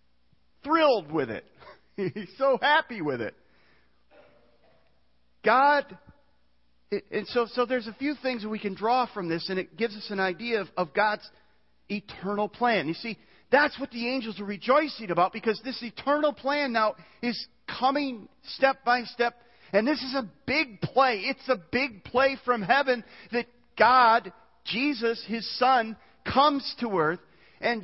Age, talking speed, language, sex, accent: 40-59, 155 wpm, English, male, American